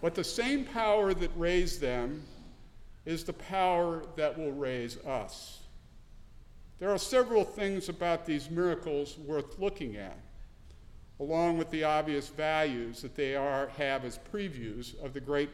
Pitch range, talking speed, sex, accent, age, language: 140-170 Hz, 145 wpm, male, American, 50-69, English